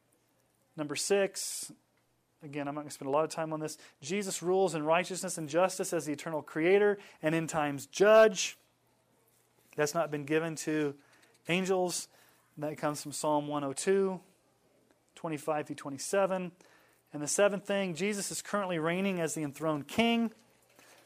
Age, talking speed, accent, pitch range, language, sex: 30-49, 155 wpm, American, 145-180 Hz, English, male